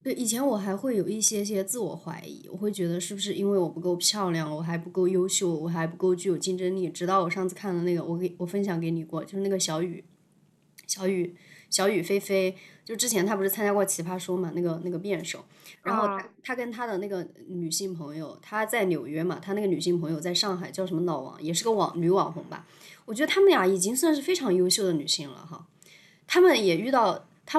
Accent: native